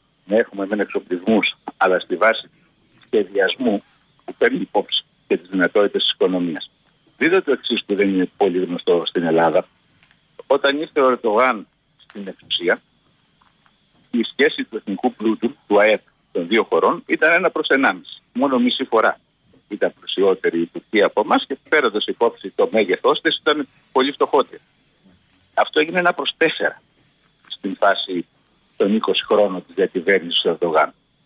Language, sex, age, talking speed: Greek, male, 50-69, 150 wpm